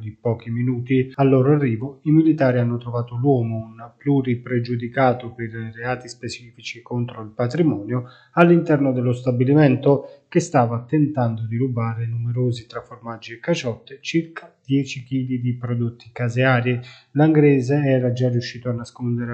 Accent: native